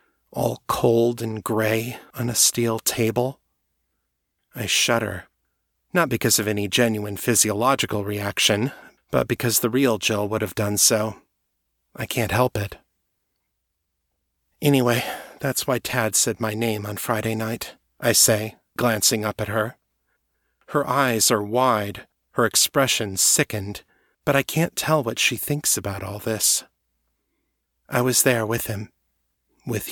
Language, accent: English, American